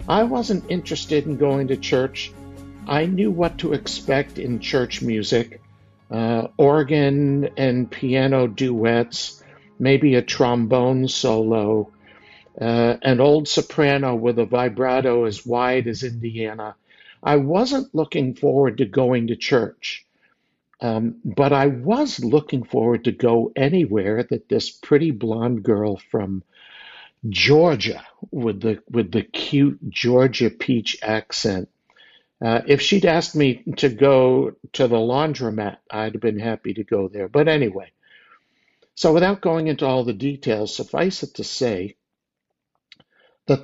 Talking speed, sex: 135 wpm, male